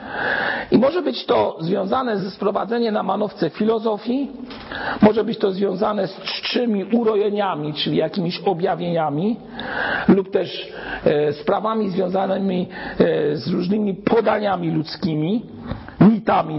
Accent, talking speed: native, 105 wpm